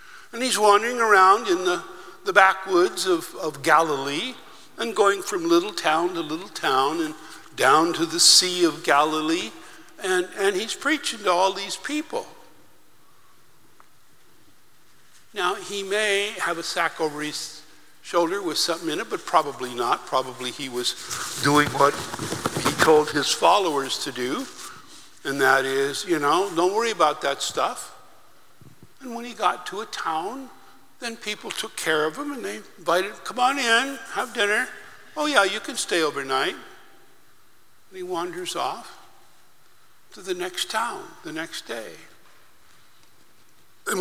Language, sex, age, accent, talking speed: English, male, 60-79, American, 150 wpm